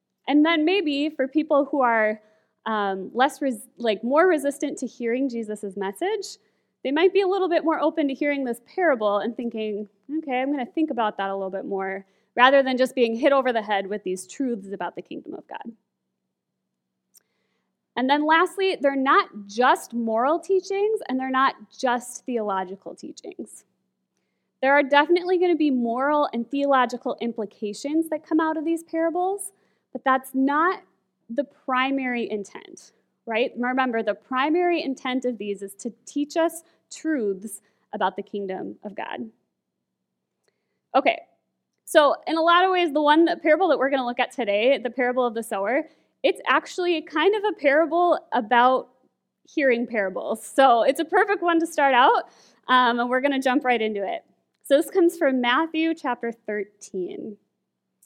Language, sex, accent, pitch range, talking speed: English, female, American, 225-315 Hz, 170 wpm